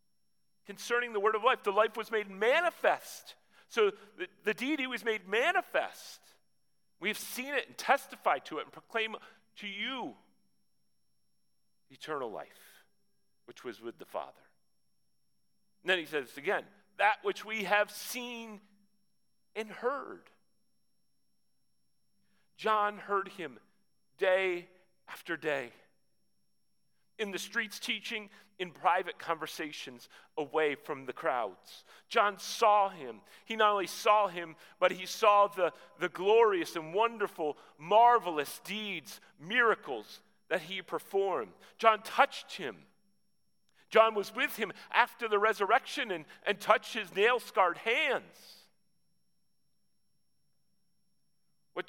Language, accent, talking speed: English, American, 120 wpm